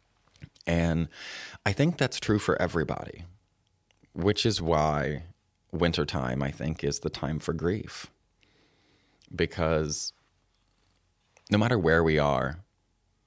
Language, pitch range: English, 75-95 Hz